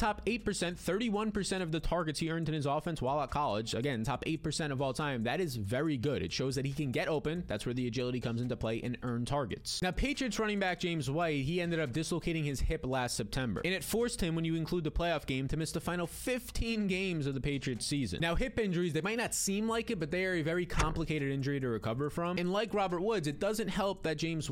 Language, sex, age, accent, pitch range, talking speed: English, male, 20-39, American, 135-190 Hz, 250 wpm